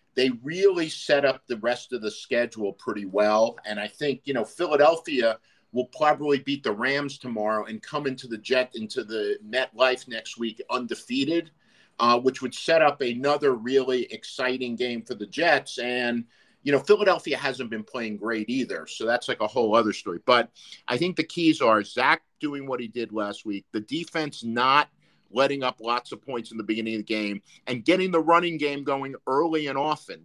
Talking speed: 195 wpm